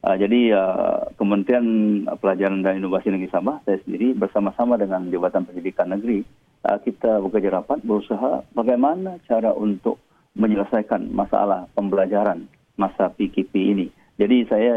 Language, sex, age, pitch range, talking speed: Malay, male, 40-59, 95-120 Hz, 130 wpm